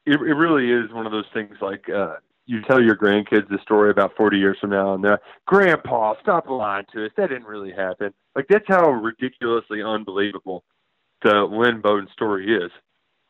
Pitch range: 105-140 Hz